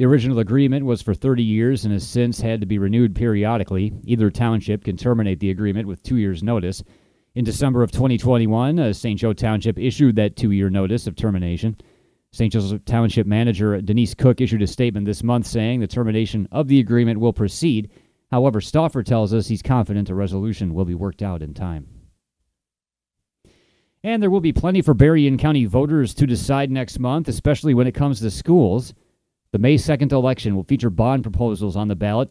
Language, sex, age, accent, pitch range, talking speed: English, male, 30-49, American, 105-125 Hz, 190 wpm